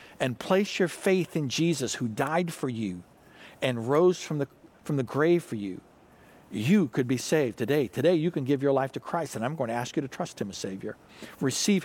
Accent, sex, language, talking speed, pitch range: American, male, English, 225 wpm, 120-170 Hz